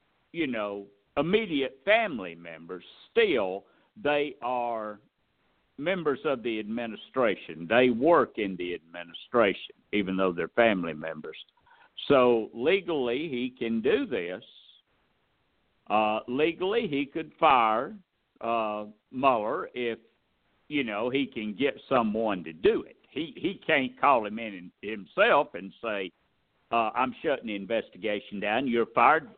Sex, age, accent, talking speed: male, 60-79, American, 125 wpm